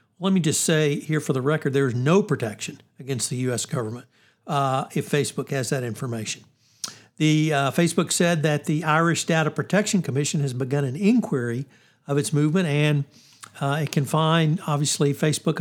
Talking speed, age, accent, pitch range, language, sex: 175 wpm, 60-79, American, 140-170 Hz, English, male